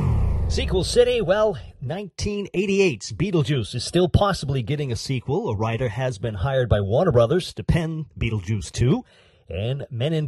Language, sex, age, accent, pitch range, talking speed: English, male, 40-59, American, 105-165 Hz, 150 wpm